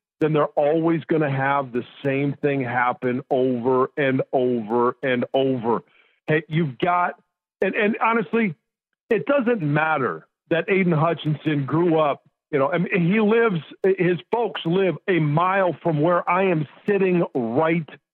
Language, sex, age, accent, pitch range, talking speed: English, male, 50-69, American, 155-190 Hz, 150 wpm